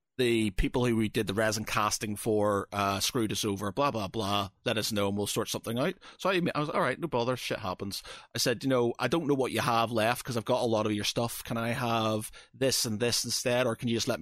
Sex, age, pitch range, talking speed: male, 30-49, 105-125 Hz, 275 wpm